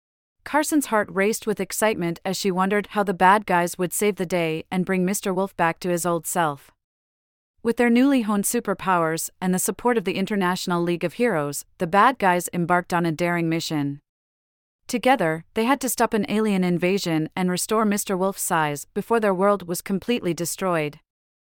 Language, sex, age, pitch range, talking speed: English, female, 30-49, 165-215 Hz, 180 wpm